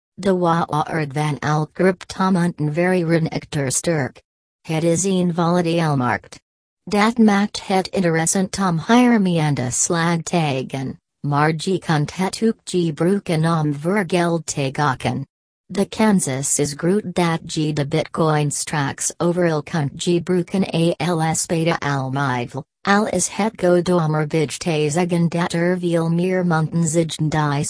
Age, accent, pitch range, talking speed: 40-59, American, 150-180 Hz, 140 wpm